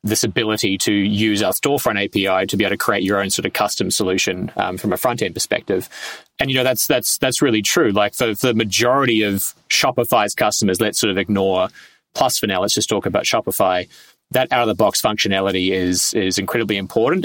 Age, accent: 20-39, Australian